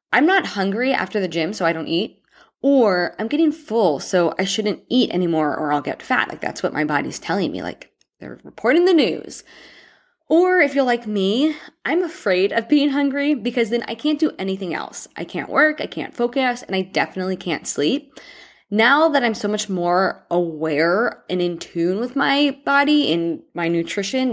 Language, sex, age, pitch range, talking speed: English, female, 20-39, 175-245 Hz, 195 wpm